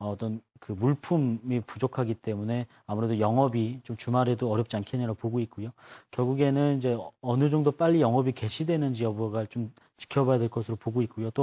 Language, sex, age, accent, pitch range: Korean, male, 30-49, native, 115-140 Hz